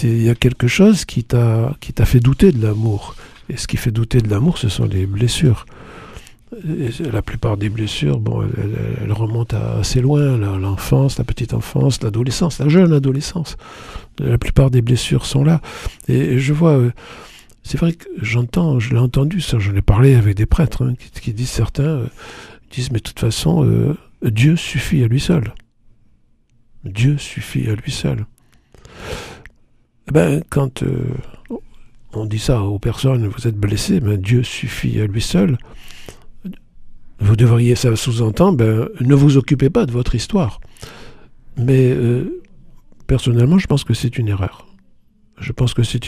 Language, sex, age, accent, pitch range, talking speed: French, male, 60-79, French, 115-135 Hz, 165 wpm